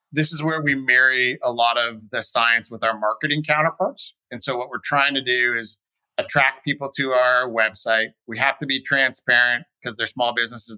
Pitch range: 115-140 Hz